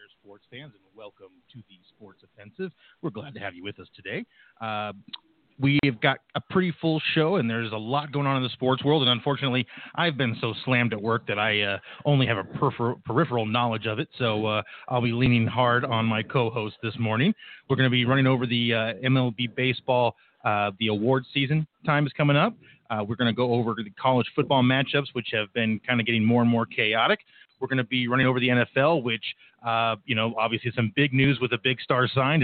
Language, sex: English, male